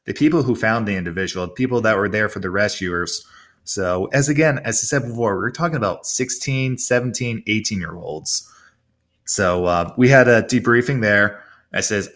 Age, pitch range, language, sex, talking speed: 20-39, 100-115 Hz, English, male, 185 wpm